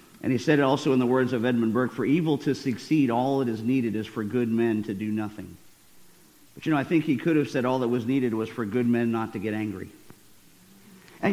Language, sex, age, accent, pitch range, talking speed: English, male, 50-69, American, 115-155 Hz, 255 wpm